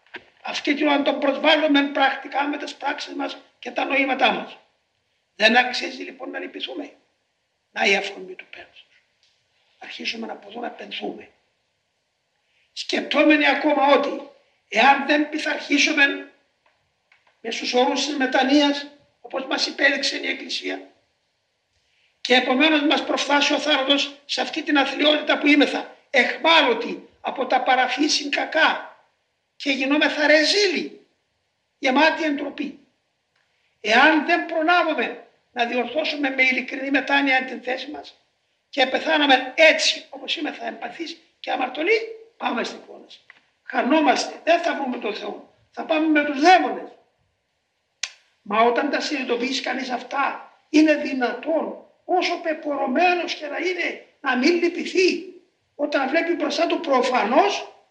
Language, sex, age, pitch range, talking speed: Greek, male, 50-69, 270-315 Hz, 125 wpm